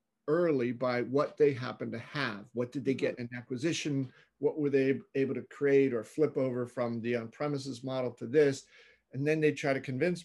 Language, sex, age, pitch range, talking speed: English, male, 40-59, 125-150 Hz, 200 wpm